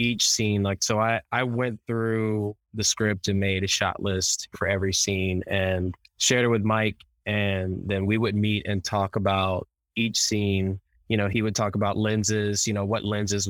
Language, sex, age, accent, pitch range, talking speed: English, male, 20-39, American, 100-110 Hz, 195 wpm